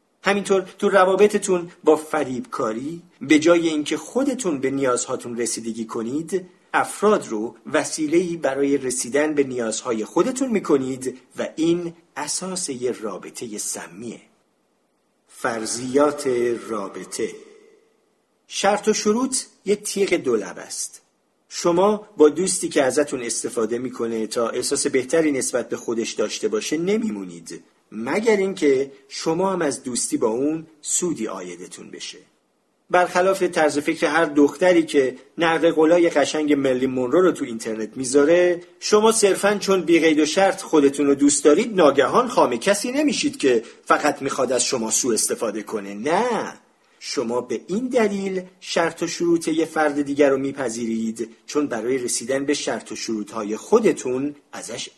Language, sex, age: Persian, male, 50-69